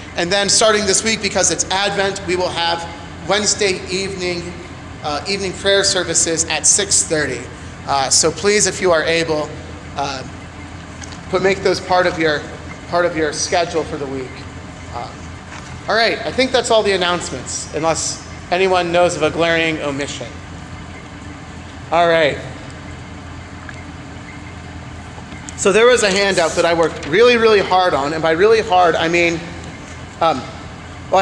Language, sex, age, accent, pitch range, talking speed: English, male, 30-49, American, 130-200 Hz, 150 wpm